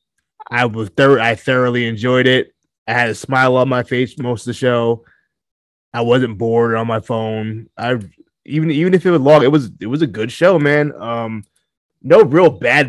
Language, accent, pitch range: English, American, 110-145 Hz